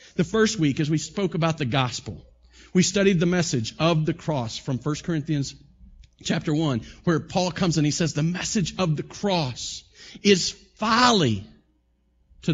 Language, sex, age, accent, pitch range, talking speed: English, male, 40-59, American, 165-240 Hz, 165 wpm